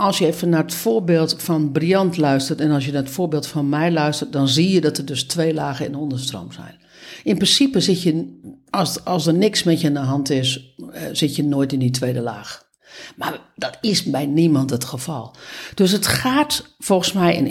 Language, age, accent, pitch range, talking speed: Dutch, 60-79, Dutch, 145-205 Hz, 220 wpm